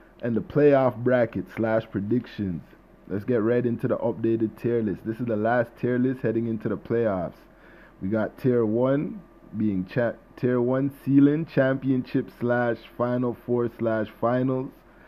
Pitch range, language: 115-135 Hz, English